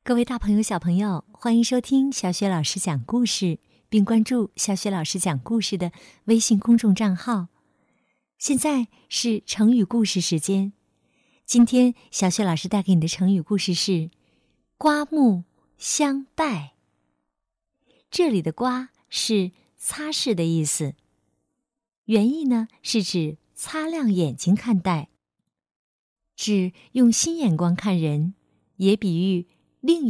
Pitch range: 170-235 Hz